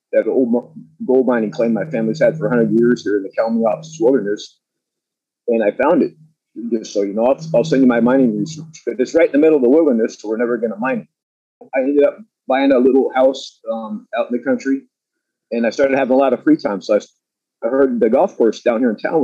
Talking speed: 245 wpm